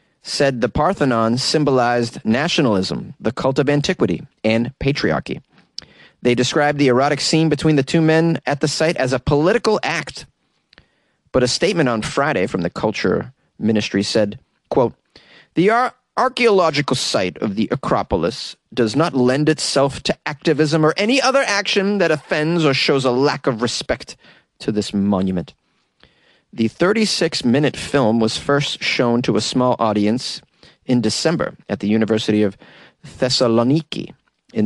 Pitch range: 110-155 Hz